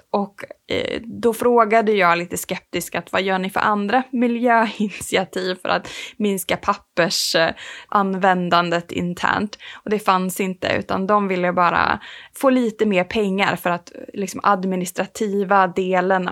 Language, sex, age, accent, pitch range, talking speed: Swedish, female, 20-39, Norwegian, 185-235 Hz, 130 wpm